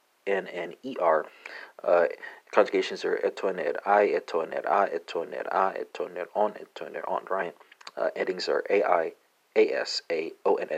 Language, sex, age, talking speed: English, male, 40-59, 155 wpm